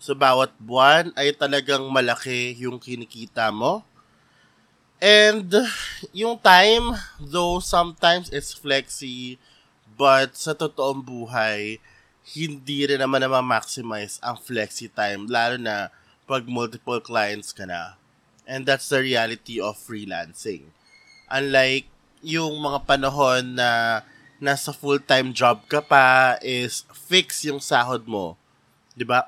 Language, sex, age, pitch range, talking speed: Filipino, male, 20-39, 115-150 Hz, 115 wpm